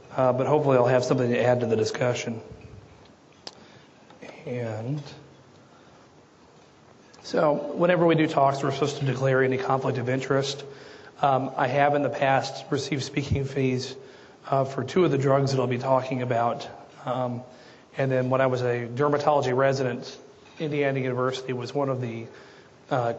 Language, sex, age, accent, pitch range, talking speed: English, male, 40-59, American, 125-140 Hz, 160 wpm